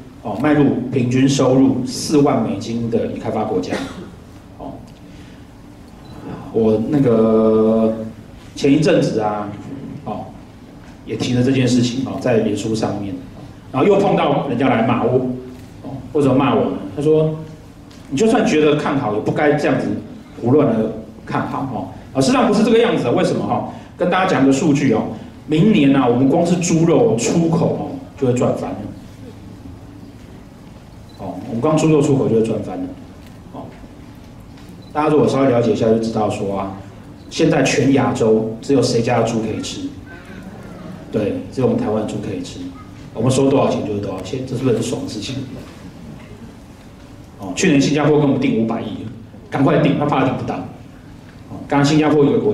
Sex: male